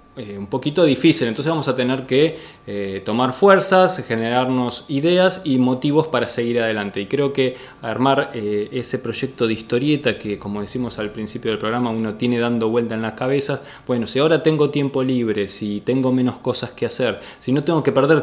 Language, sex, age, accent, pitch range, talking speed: Spanish, male, 20-39, Argentinian, 115-145 Hz, 195 wpm